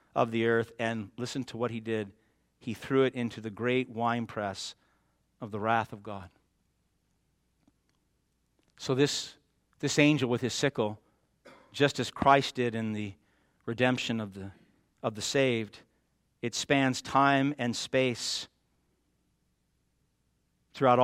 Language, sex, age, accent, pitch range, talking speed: English, male, 50-69, American, 110-125 Hz, 130 wpm